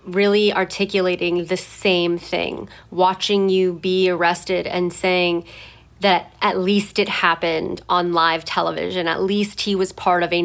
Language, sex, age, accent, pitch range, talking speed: English, female, 30-49, American, 170-195 Hz, 150 wpm